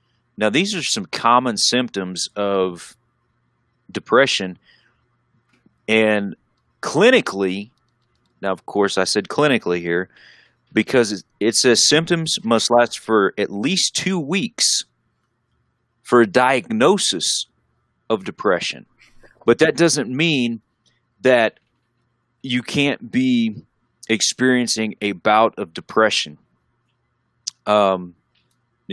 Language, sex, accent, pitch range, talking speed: English, male, American, 95-120 Hz, 100 wpm